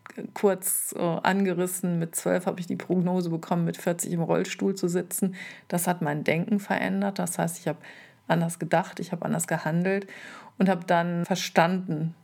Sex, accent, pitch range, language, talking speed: female, German, 175-195 Hz, German, 165 wpm